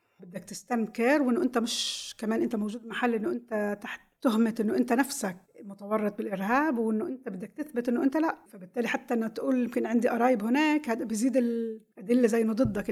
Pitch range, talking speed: 205-265 Hz, 180 wpm